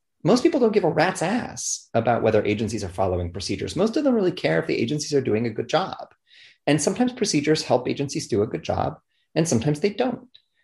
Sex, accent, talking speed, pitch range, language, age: male, American, 220 wpm, 100-155 Hz, English, 30-49